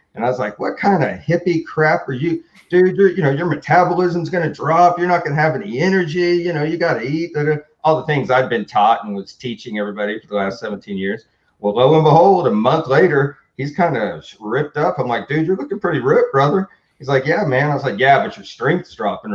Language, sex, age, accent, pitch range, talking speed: English, male, 40-59, American, 125-160 Hz, 250 wpm